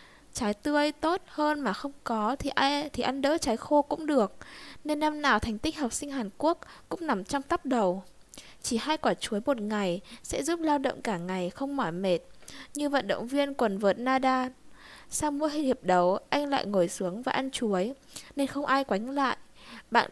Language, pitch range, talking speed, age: Vietnamese, 210-285 Hz, 210 wpm, 10-29